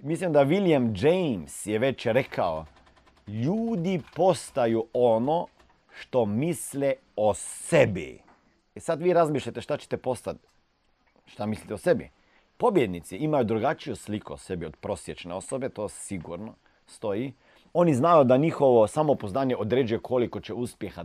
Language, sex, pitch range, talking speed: Croatian, male, 95-140 Hz, 130 wpm